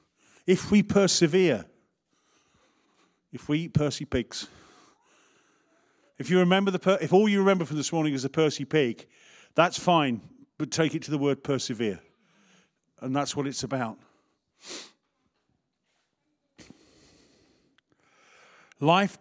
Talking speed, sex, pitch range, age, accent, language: 120 wpm, male, 125-160 Hz, 40-59, British, English